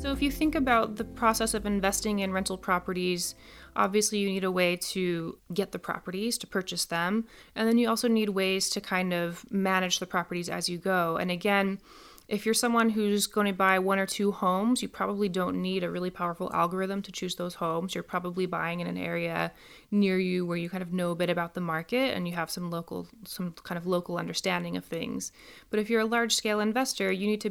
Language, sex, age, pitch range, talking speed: English, female, 20-39, 175-210 Hz, 225 wpm